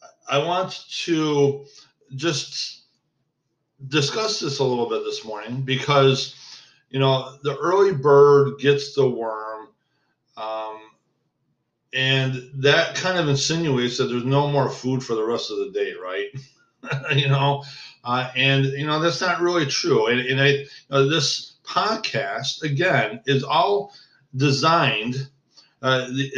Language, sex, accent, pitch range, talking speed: English, male, American, 130-155 Hz, 135 wpm